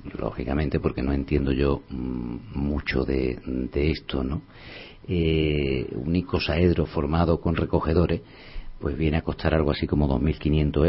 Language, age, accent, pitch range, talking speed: Spanish, 50-69, Spanish, 75-95 Hz, 130 wpm